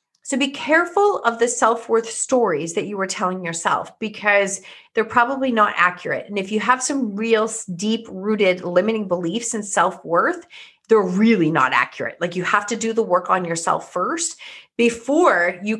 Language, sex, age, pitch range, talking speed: English, female, 30-49, 180-235 Hz, 165 wpm